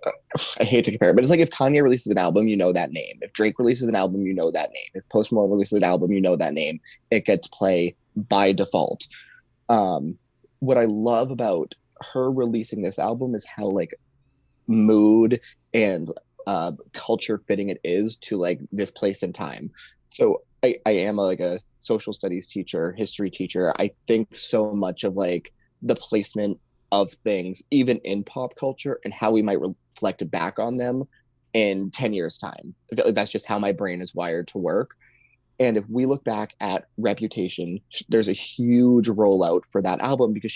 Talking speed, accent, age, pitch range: 190 wpm, American, 20-39, 100-125 Hz